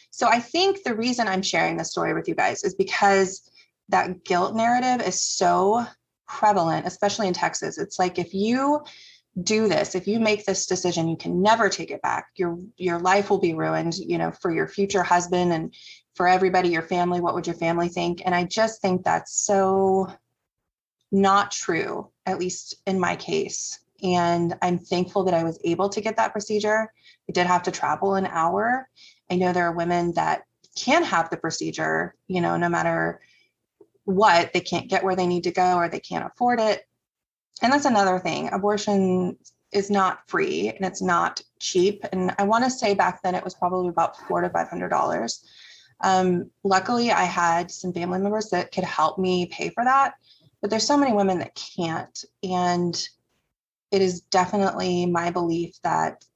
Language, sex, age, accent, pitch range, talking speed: English, female, 20-39, American, 175-210 Hz, 190 wpm